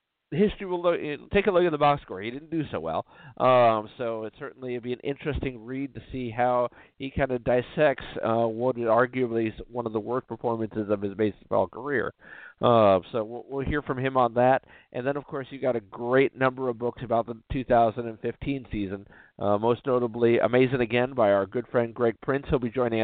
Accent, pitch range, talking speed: American, 115-145 Hz, 215 wpm